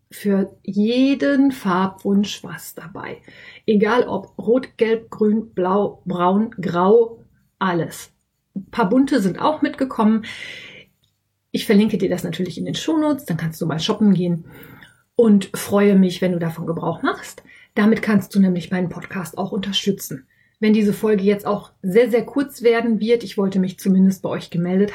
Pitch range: 185-230 Hz